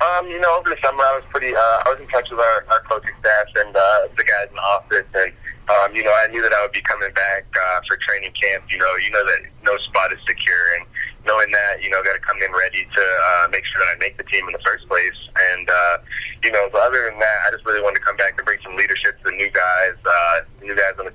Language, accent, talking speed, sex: English, American, 290 wpm, male